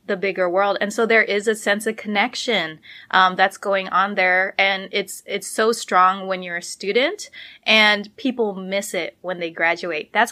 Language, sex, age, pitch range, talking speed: English, female, 20-39, 190-230 Hz, 190 wpm